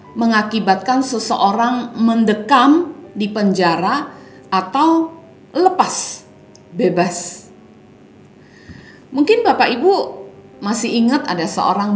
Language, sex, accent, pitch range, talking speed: Indonesian, female, native, 180-275 Hz, 75 wpm